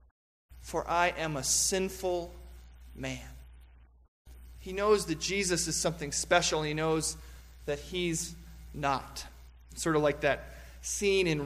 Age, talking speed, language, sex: 20-39, 125 wpm, English, male